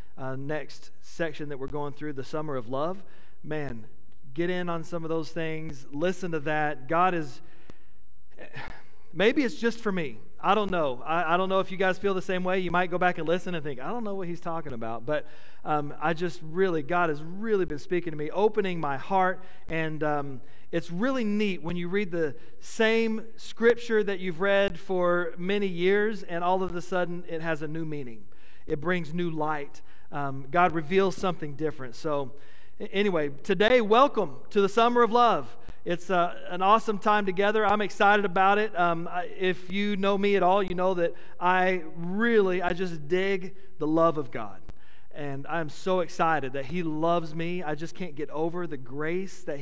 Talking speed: 200 wpm